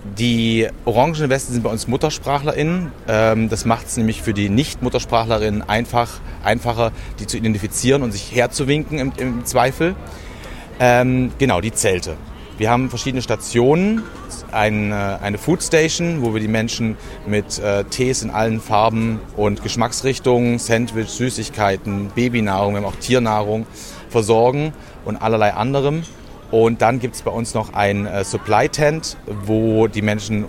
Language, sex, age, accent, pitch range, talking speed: German, male, 30-49, German, 105-125 Hz, 135 wpm